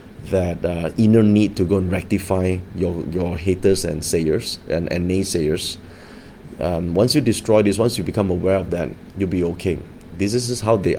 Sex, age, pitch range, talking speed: male, 30-49, 85-100 Hz, 185 wpm